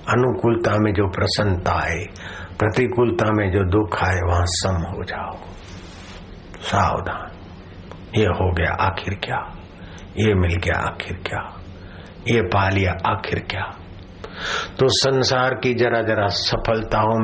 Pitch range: 90-105 Hz